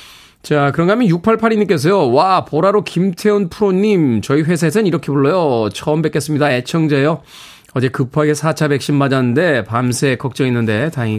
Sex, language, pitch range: male, Korean, 120-180 Hz